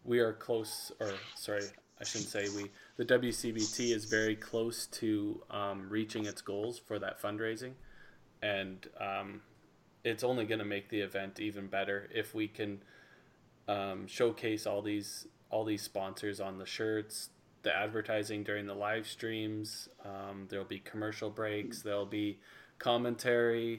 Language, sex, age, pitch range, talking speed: English, male, 20-39, 105-115 Hz, 150 wpm